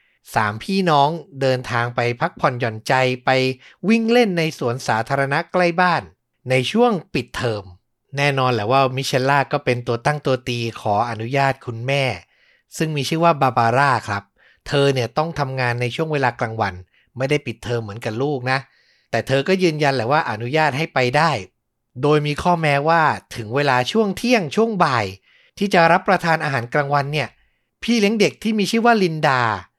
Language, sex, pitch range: Thai, male, 120-165 Hz